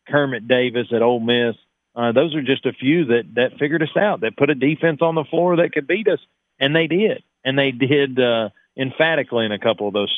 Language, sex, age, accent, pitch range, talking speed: English, male, 40-59, American, 120-150 Hz, 235 wpm